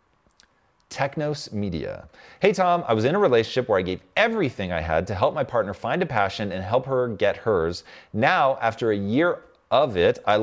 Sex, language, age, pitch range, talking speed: male, English, 30-49, 110-150 Hz, 195 wpm